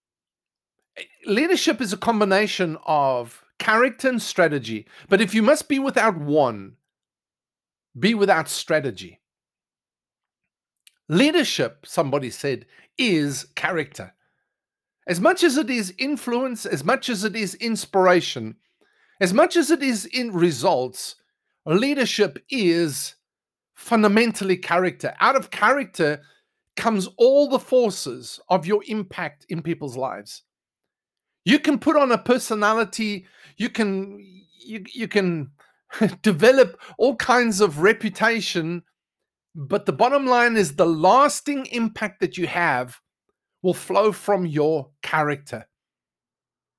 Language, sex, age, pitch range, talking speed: English, male, 50-69, 175-245 Hz, 115 wpm